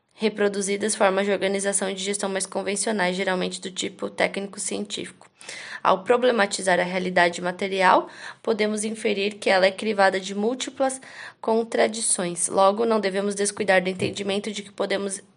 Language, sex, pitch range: Portuguese, female, 195-220 Hz